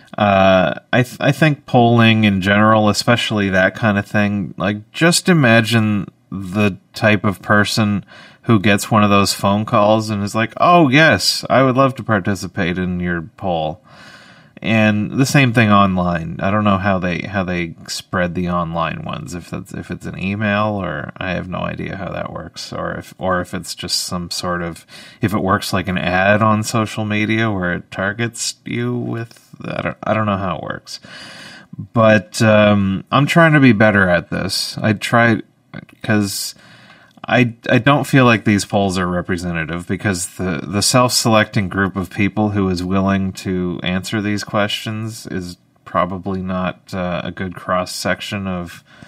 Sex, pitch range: male, 95-110 Hz